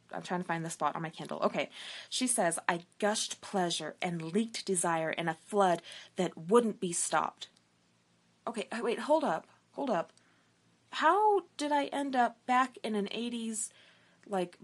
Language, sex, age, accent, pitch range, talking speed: English, female, 20-39, American, 175-255 Hz, 170 wpm